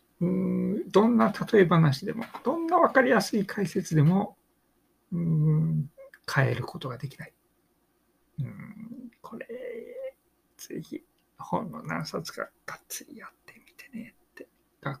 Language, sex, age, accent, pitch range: Japanese, male, 60-79, native, 130-200 Hz